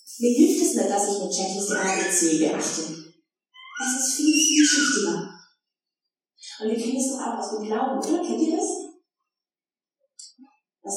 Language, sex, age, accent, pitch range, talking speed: German, female, 20-39, German, 210-295 Hz, 170 wpm